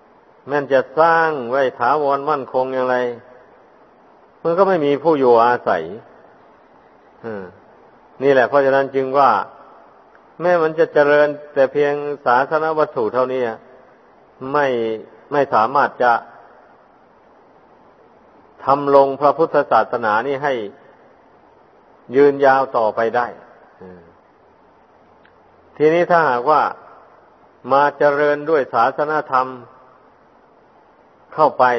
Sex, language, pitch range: male, Thai, 130-155 Hz